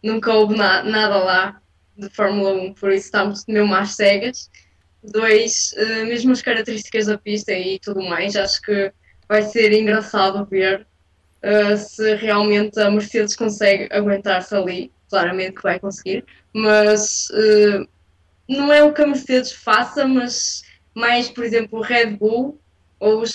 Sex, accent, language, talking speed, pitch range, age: female, Brazilian, Portuguese, 150 wpm, 200-230 Hz, 10-29